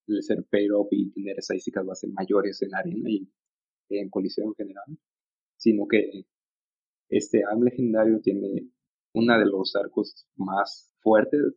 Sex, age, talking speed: male, 30-49, 155 wpm